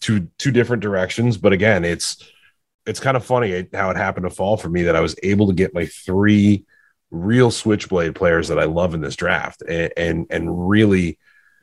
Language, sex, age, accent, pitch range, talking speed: English, male, 30-49, American, 90-110 Hz, 200 wpm